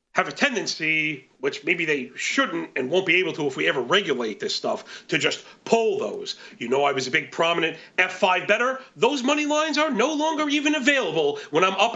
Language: English